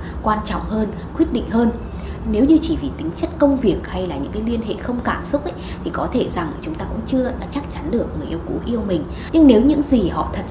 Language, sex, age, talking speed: Vietnamese, female, 20-39, 265 wpm